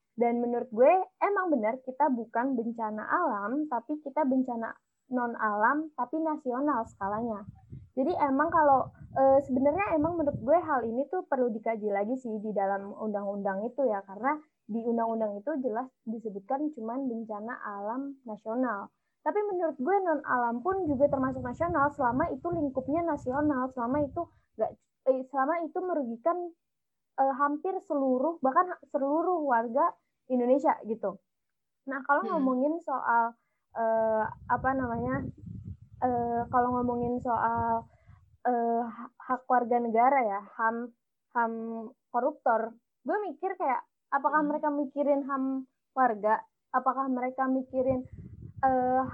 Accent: native